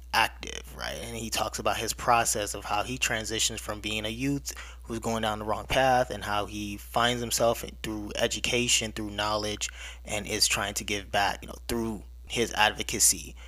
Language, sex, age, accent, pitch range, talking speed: English, male, 20-39, American, 95-120 Hz, 185 wpm